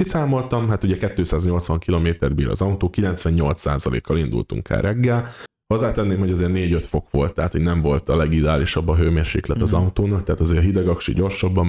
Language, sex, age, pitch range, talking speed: Hungarian, male, 20-39, 85-110 Hz, 185 wpm